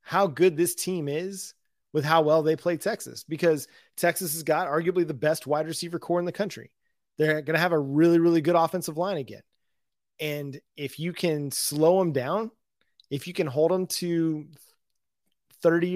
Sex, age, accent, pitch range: male, 30-49, American, 155-185 Hz